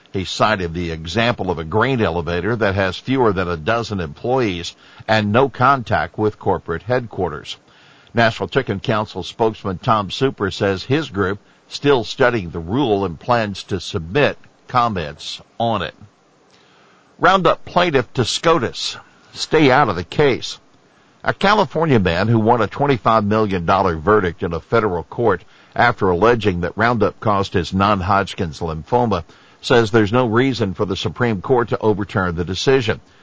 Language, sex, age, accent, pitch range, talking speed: English, male, 60-79, American, 95-120 Hz, 150 wpm